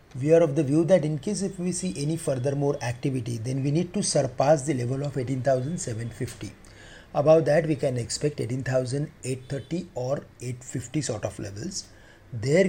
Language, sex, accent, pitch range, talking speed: English, male, Indian, 120-150 Hz, 170 wpm